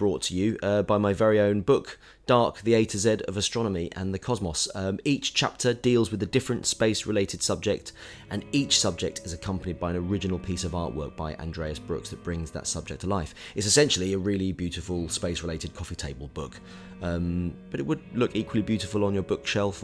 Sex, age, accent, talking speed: male, 20-39, British, 205 wpm